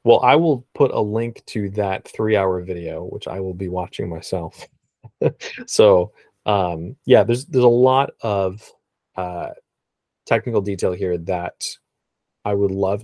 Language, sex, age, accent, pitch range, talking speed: English, male, 20-39, American, 90-120 Hz, 145 wpm